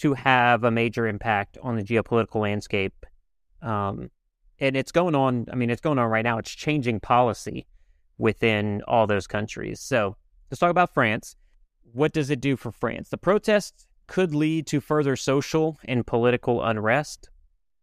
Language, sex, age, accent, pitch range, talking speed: English, male, 30-49, American, 110-140 Hz, 165 wpm